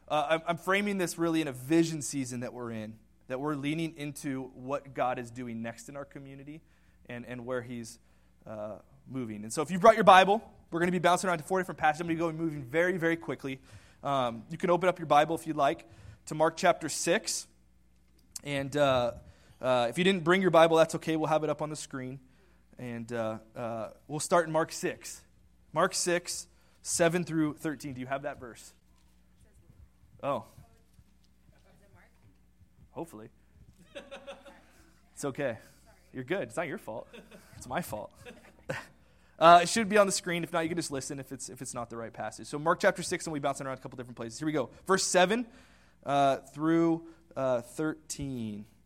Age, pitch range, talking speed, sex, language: 20-39, 115-165 Hz, 195 wpm, male, English